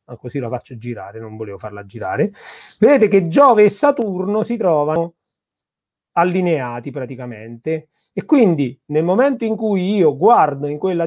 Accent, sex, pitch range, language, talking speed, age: native, male, 125-170 Hz, Italian, 145 wpm, 40-59